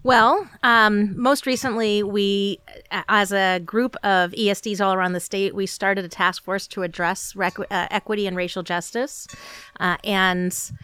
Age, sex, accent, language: 30-49, female, American, English